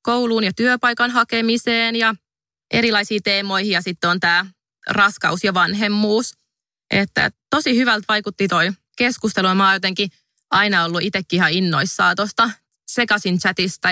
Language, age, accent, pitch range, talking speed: Finnish, 20-39, native, 180-215 Hz, 130 wpm